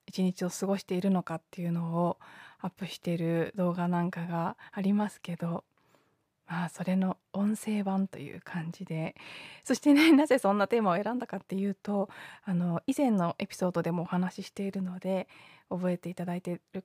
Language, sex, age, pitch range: Japanese, female, 20-39, 175-205 Hz